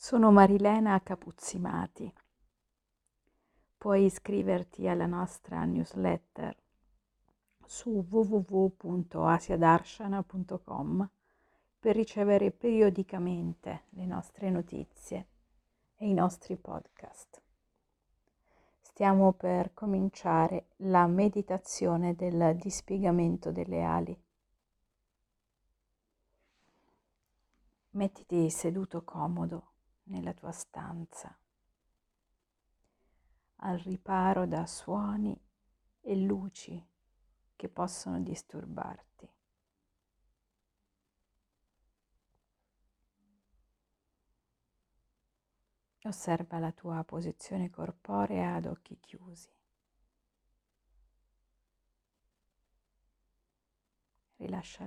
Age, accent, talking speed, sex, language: 50-69, native, 60 wpm, female, Italian